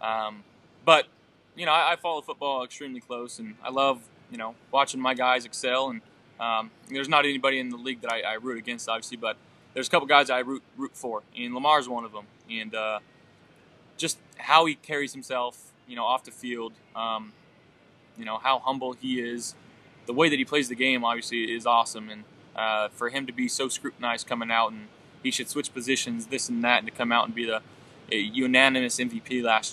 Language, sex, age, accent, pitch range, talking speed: English, male, 20-39, American, 115-140 Hz, 210 wpm